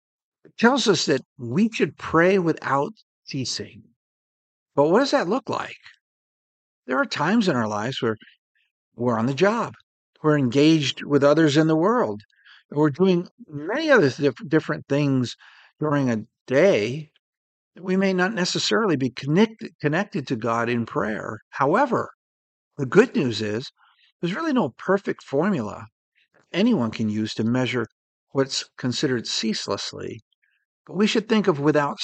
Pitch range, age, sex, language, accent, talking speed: 120-185 Hz, 50-69, male, English, American, 140 wpm